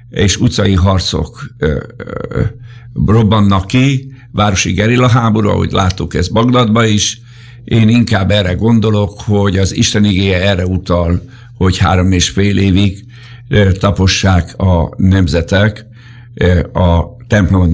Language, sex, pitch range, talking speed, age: Hungarian, male, 95-120 Hz, 120 wpm, 60-79